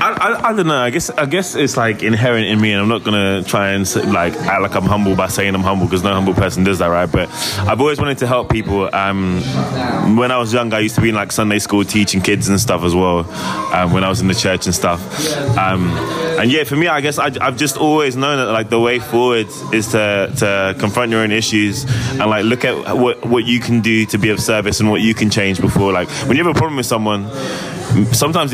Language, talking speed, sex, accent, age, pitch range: English, 260 wpm, male, British, 20-39, 100-125 Hz